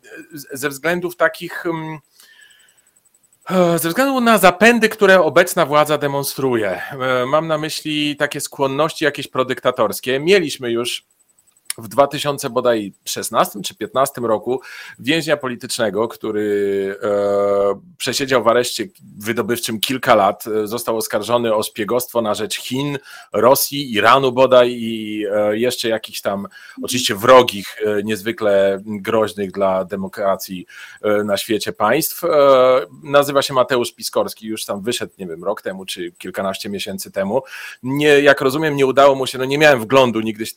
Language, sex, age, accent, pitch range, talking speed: Polish, male, 40-59, native, 115-145 Hz, 135 wpm